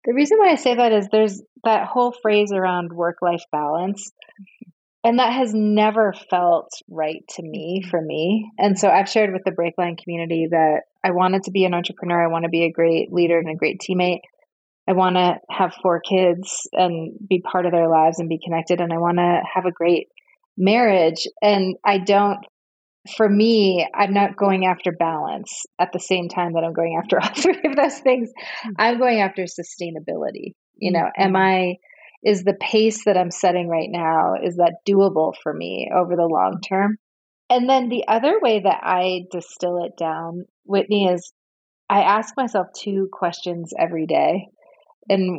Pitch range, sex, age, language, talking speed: 170-205 Hz, female, 30-49, English, 185 wpm